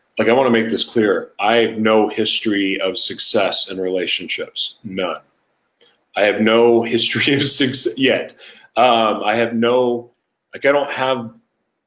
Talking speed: 155 wpm